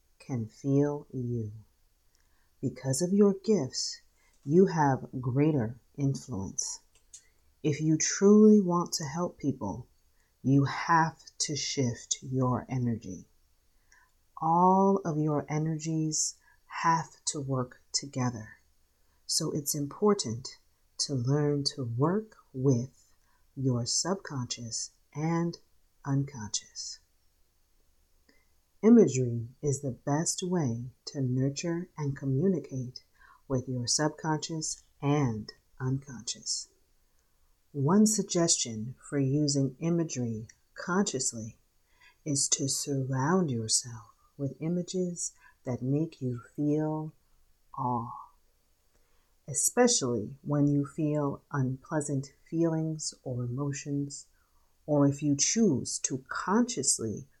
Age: 40-59